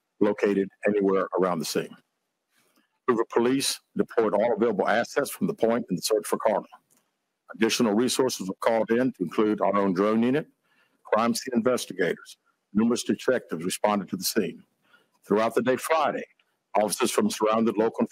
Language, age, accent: English, 60-79, American